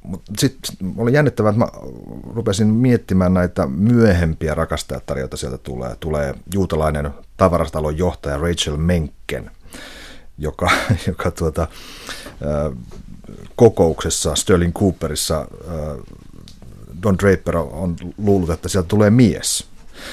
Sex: male